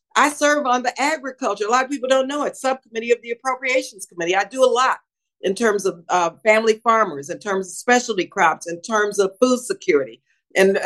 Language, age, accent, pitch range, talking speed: English, 50-69, American, 185-255 Hz, 210 wpm